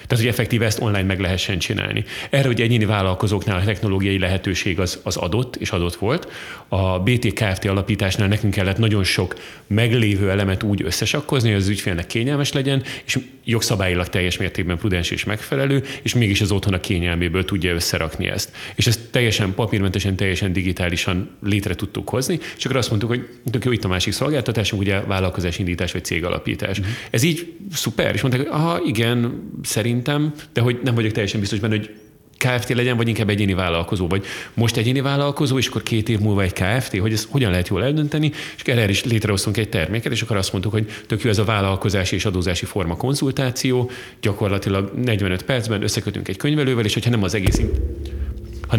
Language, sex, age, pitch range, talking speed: Hungarian, male, 30-49, 95-120 Hz, 180 wpm